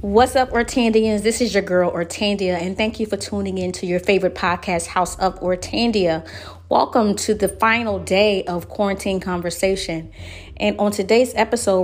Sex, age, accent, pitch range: female, 30-49, American, 175-205 Hz